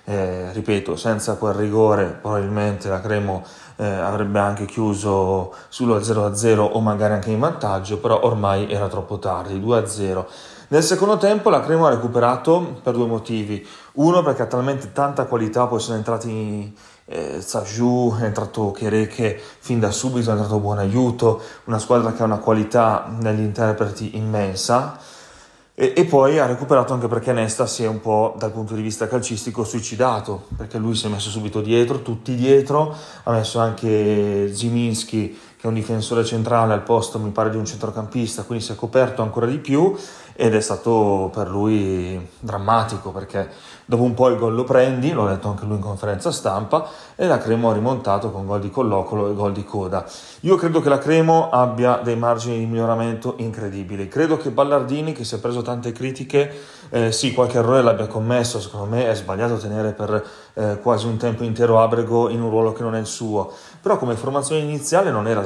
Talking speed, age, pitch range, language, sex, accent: 185 wpm, 30-49, 105-120 Hz, Italian, male, native